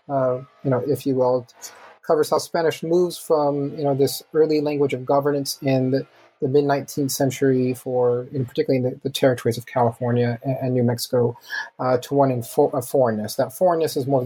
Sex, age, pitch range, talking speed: male, 30-49, 120-145 Hz, 200 wpm